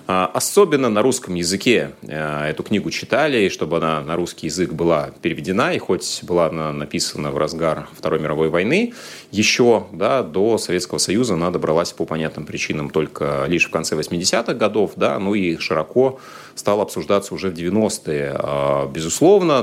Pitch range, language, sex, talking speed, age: 75-95 Hz, Russian, male, 155 wpm, 30-49